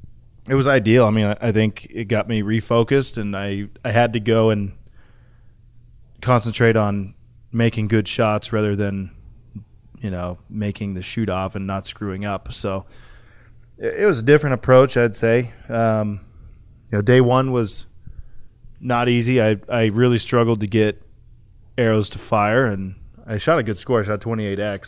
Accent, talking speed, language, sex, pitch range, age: American, 170 wpm, English, male, 105-120 Hz, 20-39